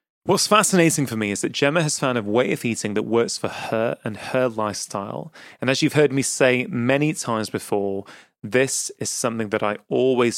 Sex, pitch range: male, 110-150 Hz